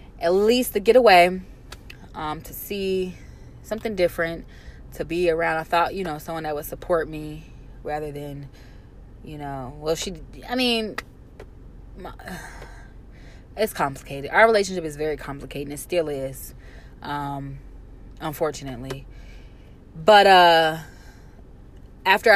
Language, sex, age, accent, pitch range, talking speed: English, female, 20-39, American, 145-195 Hz, 120 wpm